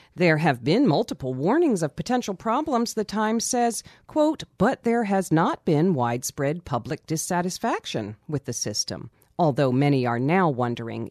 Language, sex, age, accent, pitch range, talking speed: English, female, 40-59, American, 125-165 Hz, 150 wpm